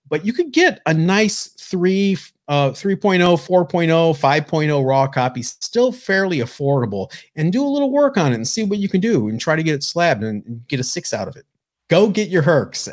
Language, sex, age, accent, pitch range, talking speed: English, male, 40-59, American, 115-165 Hz, 210 wpm